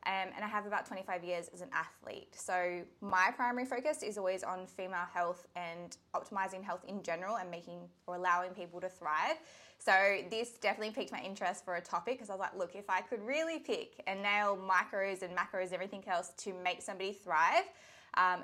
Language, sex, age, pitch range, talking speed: English, female, 20-39, 175-205 Hz, 205 wpm